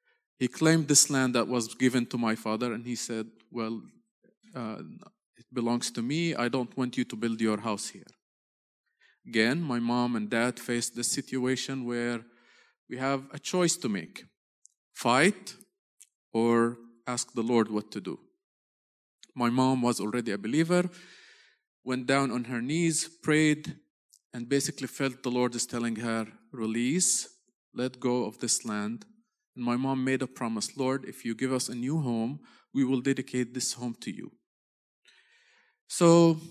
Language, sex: English, male